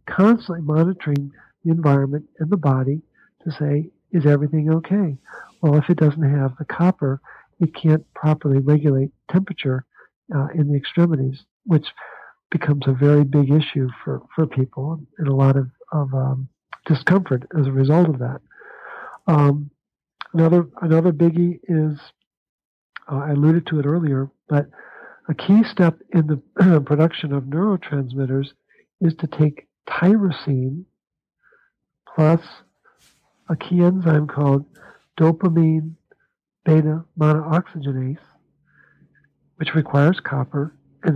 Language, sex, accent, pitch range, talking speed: English, male, American, 140-170 Hz, 120 wpm